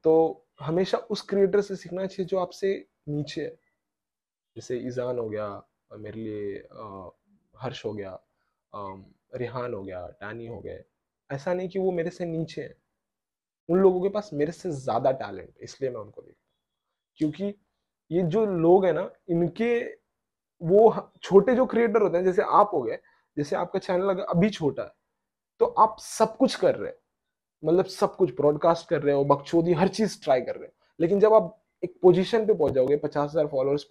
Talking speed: 185 wpm